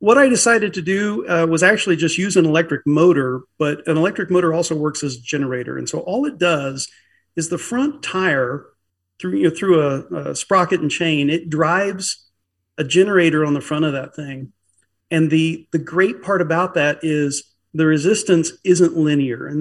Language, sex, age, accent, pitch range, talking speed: English, male, 40-59, American, 145-185 Hz, 195 wpm